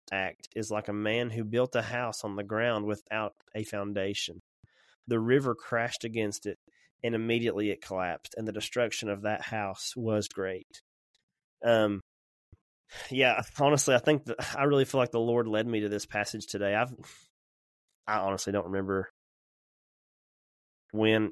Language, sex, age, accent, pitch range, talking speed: English, male, 20-39, American, 105-120 Hz, 160 wpm